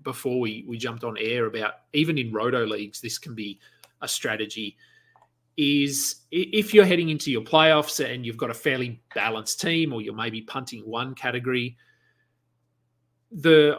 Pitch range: 115-150 Hz